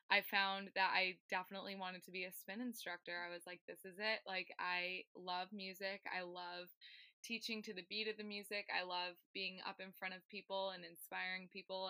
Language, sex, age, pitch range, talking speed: English, female, 20-39, 185-205 Hz, 205 wpm